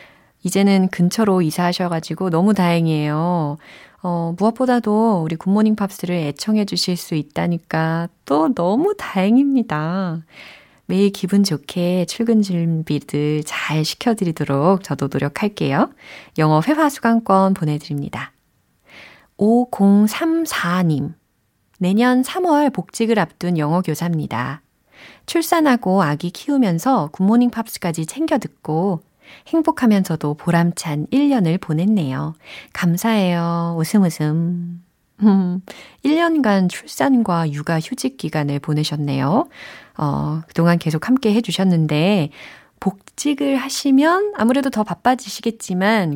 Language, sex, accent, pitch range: Korean, female, native, 160-215 Hz